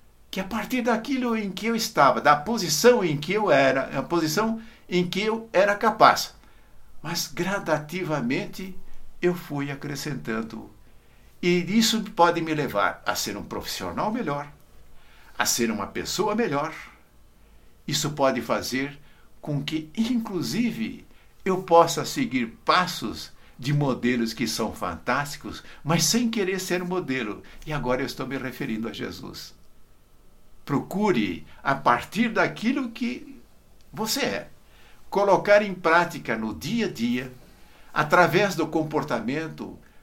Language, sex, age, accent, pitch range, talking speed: Portuguese, male, 60-79, Brazilian, 130-200 Hz, 130 wpm